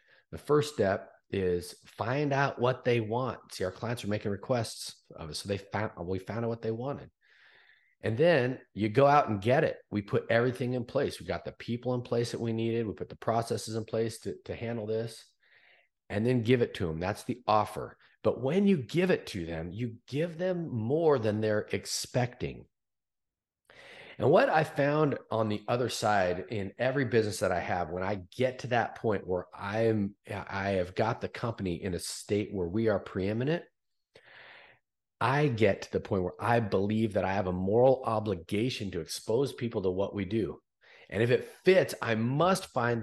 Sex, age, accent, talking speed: male, 40-59, American, 200 wpm